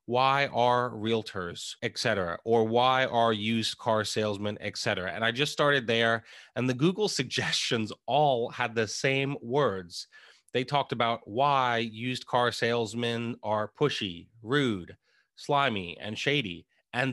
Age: 30-49